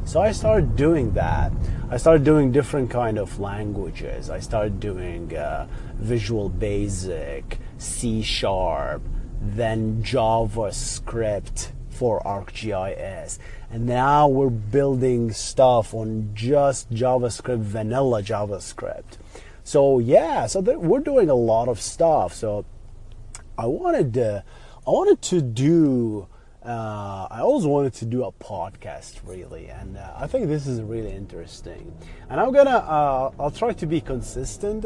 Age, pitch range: 30-49, 100-130 Hz